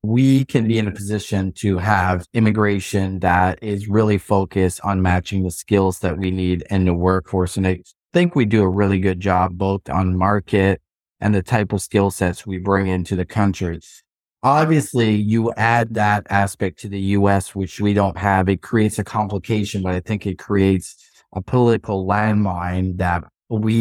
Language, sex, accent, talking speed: English, male, American, 180 wpm